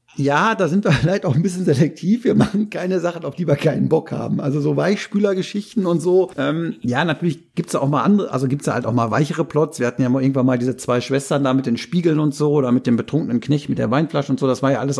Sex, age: male, 50-69